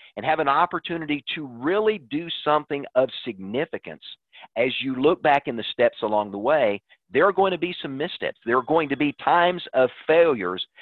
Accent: American